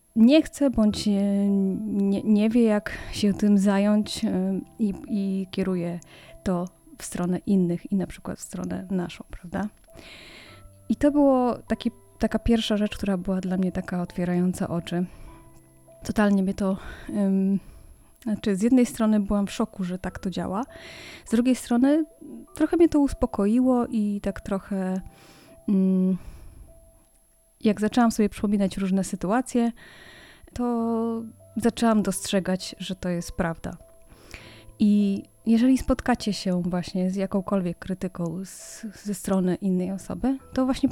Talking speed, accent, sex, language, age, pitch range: 135 wpm, native, female, Polish, 20-39, 185-230 Hz